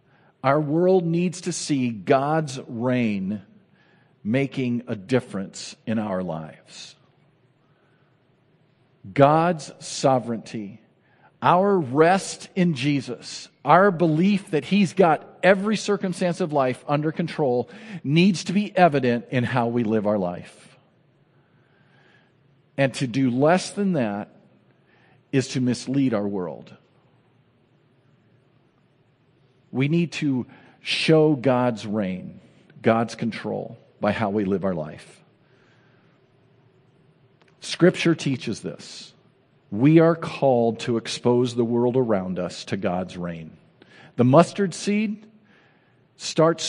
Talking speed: 110 wpm